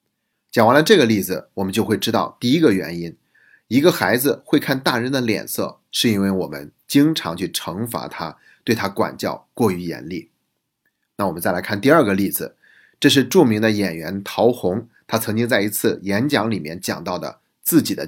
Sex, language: male, Chinese